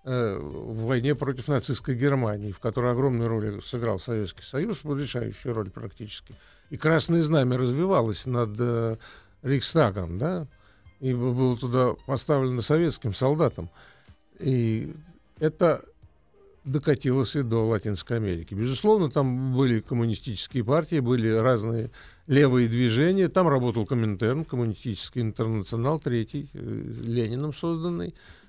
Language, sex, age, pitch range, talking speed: Russian, male, 50-69, 115-150 Hz, 105 wpm